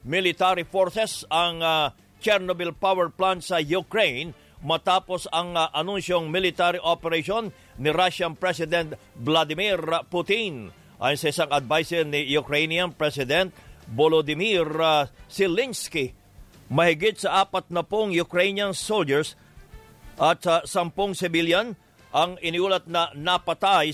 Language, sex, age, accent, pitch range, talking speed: English, male, 50-69, Filipino, 155-180 Hz, 110 wpm